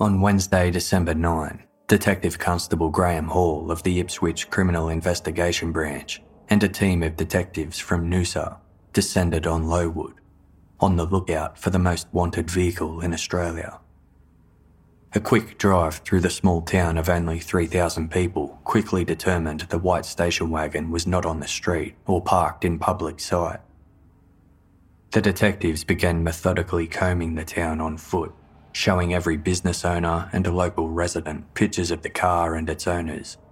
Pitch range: 80-95 Hz